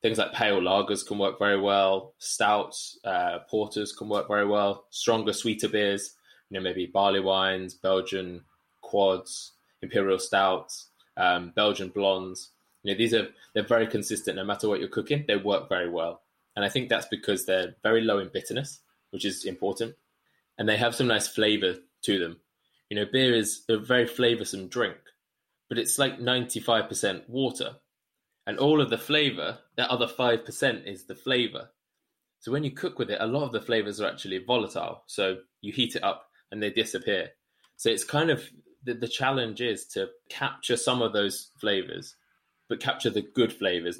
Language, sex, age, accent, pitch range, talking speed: English, male, 20-39, British, 100-125 Hz, 185 wpm